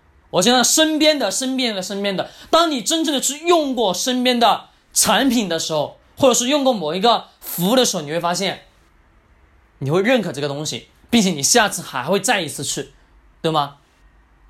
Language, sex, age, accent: Chinese, male, 20-39, native